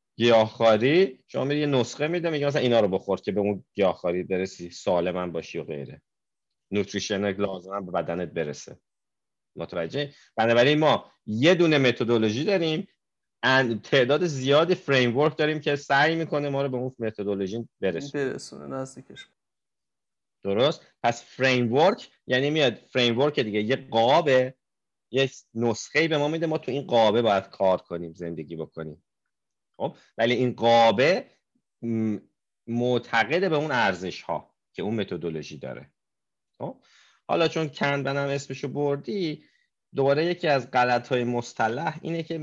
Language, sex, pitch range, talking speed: Persian, male, 110-145 Hz, 135 wpm